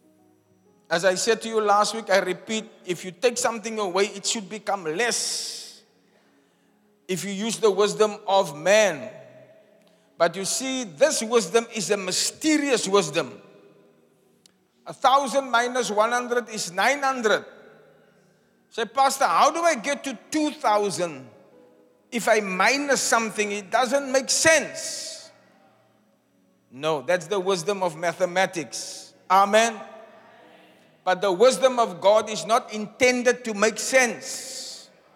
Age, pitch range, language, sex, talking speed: 50-69, 190-245 Hz, English, male, 135 wpm